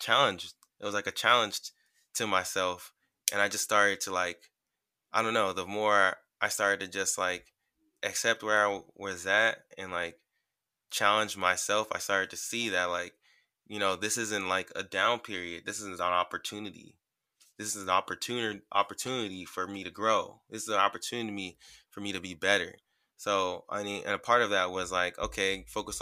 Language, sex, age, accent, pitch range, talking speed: English, male, 20-39, American, 90-100 Hz, 185 wpm